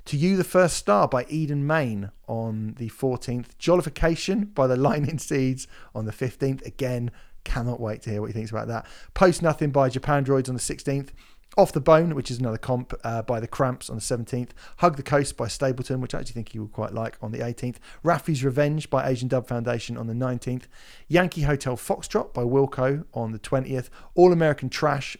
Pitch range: 115-145 Hz